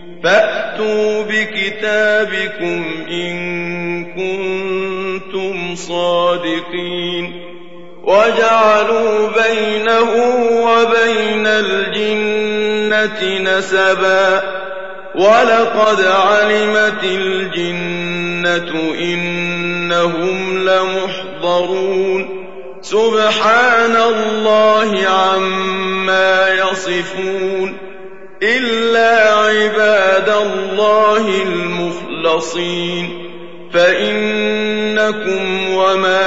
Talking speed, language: 40 wpm, Arabic